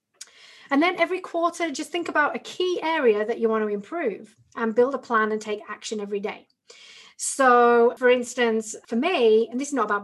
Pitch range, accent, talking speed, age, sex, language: 215-265 Hz, British, 205 wpm, 30-49, female, English